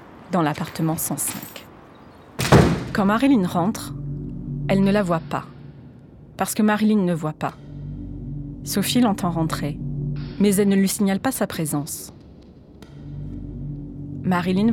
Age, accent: 30-49, French